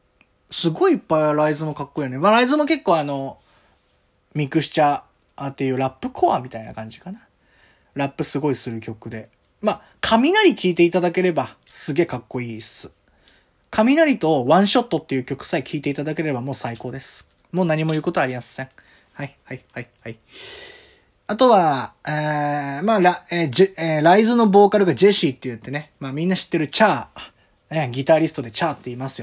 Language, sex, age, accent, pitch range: Japanese, male, 20-39, native, 135-200 Hz